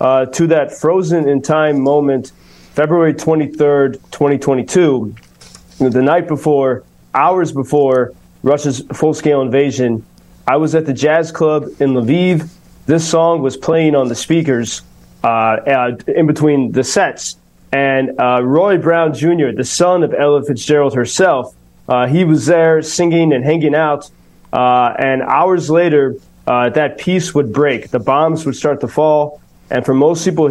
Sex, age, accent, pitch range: male, 20-39, American, 130-160 Hz